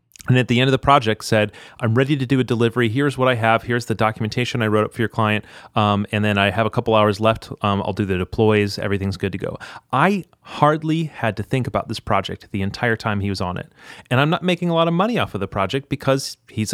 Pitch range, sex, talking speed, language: 110-150 Hz, male, 265 wpm, English